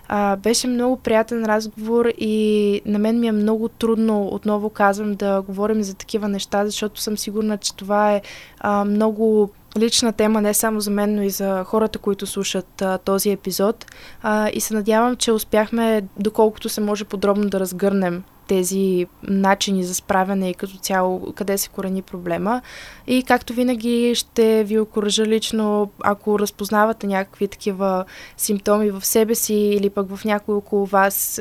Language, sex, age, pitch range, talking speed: Bulgarian, female, 20-39, 195-215 Hz, 155 wpm